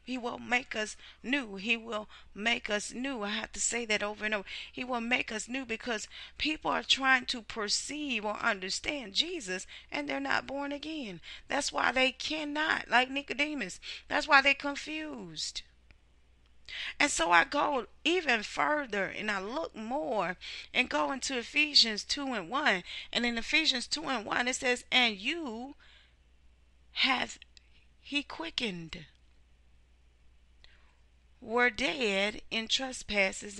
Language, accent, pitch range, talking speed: English, American, 165-275 Hz, 145 wpm